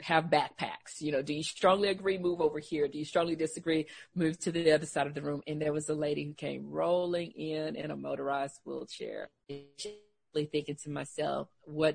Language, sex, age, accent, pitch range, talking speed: English, female, 40-59, American, 145-205 Hz, 205 wpm